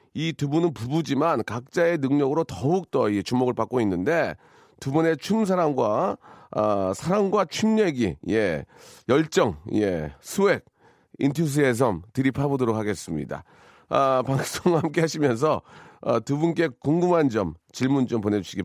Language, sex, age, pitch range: Korean, male, 40-59, 120-180 Hz